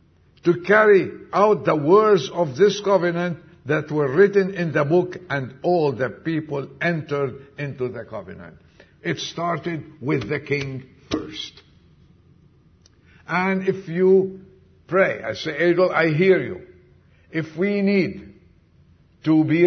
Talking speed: 130 wpm